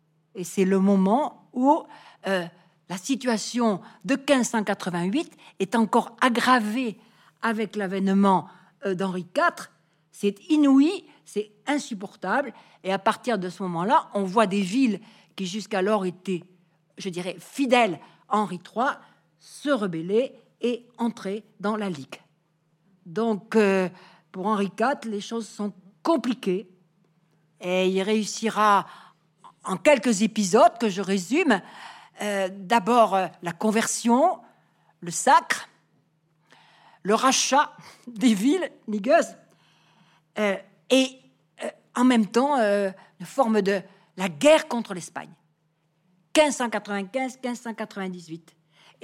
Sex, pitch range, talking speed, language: female, 185-240 Hz, 115 wpm, French